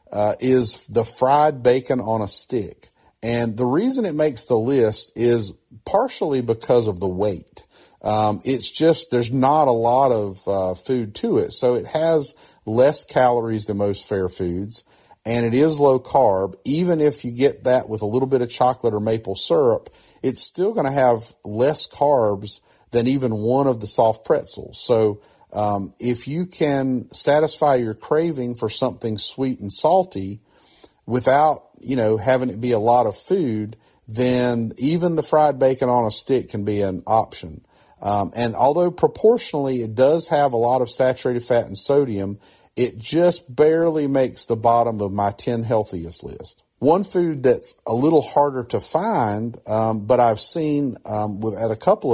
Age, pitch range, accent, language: 40-59, 110-135 Hz, American, English